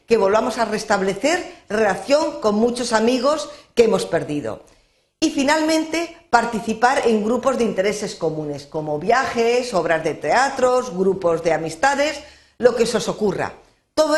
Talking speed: 140 wpm